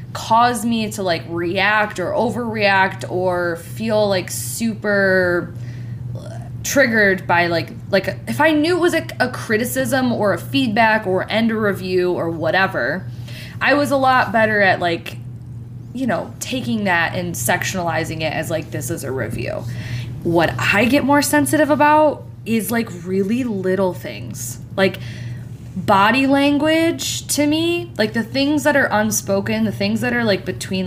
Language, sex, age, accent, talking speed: English, female, 20-39, American, 155 wpm